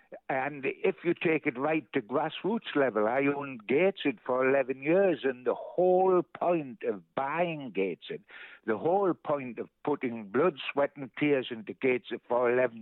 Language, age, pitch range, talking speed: English, 60-79, 130-170 Hz, 165 wpm